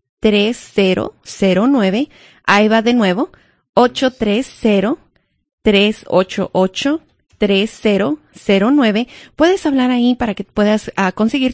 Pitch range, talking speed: 190-235 Hz, 75 wpm